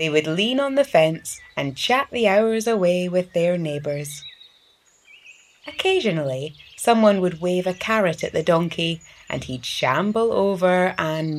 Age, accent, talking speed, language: 30-49, British, 150 wpm, English